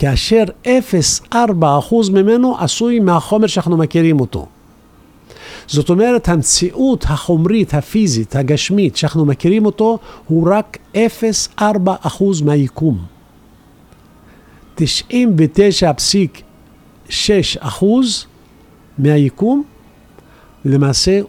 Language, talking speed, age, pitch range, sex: Hebrew, 70 wpm, 50-69, 140-200 Hz, male